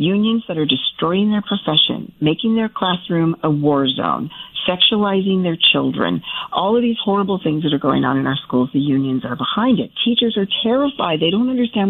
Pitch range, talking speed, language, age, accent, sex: 155-225 Hz, 190 wpm, English, 50-69, American, female